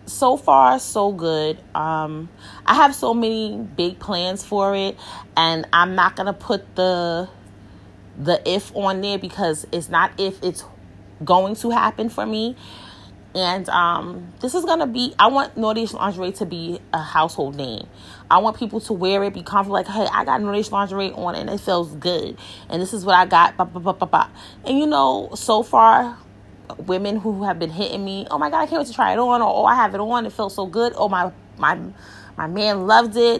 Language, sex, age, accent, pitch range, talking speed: English, female, 30-49, American, 165-225 Hz, 200 wpm